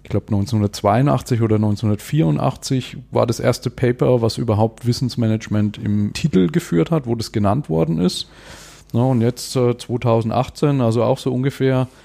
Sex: male